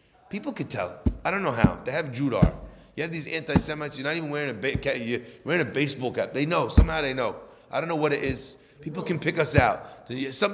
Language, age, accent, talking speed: English, 30-49, American, 240 wpm